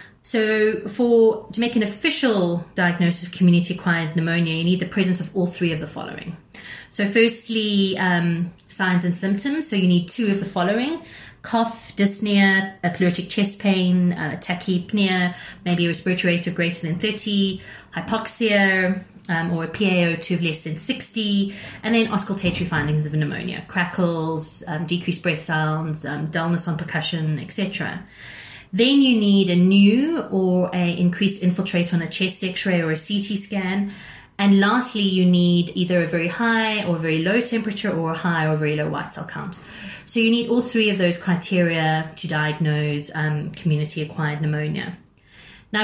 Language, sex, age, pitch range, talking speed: English, female, 30-49, 170-205 Hz, 165 wpm